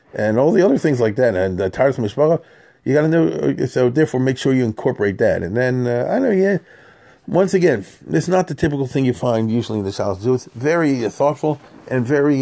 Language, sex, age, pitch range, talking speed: English, male, 40-59, 110-145 Hz, 235 wpm